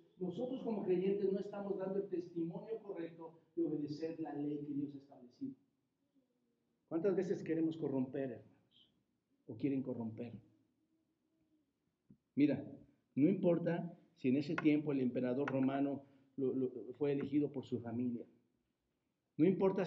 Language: Spanish